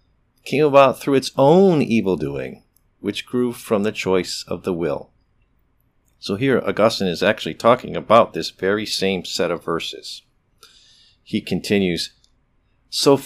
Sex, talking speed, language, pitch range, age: male, 140 wpm, English, 100-130 Hz, 50-69